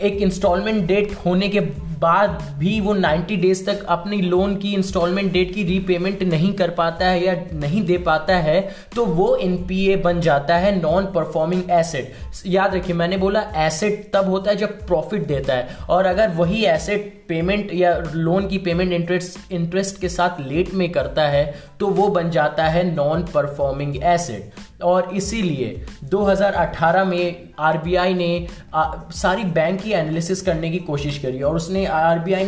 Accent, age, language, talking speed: native, 20-39, Hindi, 165 wpm